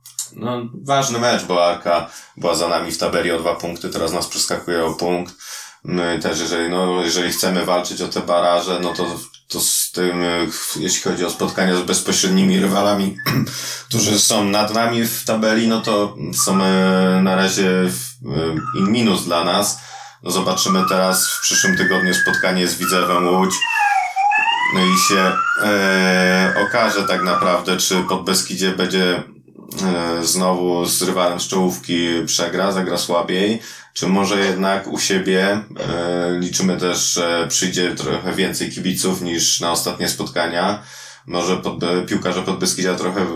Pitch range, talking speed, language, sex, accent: 90-100 Hz, 145 wpm, Polish, male, native